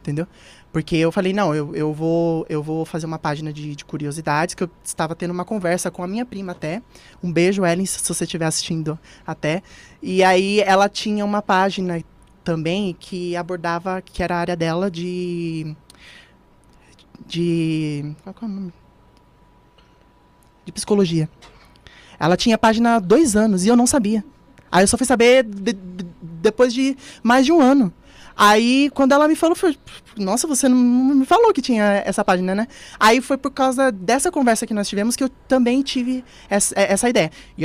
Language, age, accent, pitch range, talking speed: Portuguese, 20-39, Brazilian, 170-225 Hz, 175 wpm